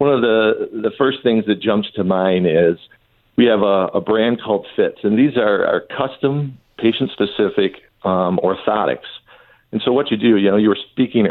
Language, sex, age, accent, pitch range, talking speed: English, male, 50-69, American, 95-115 Hz, 190 wpm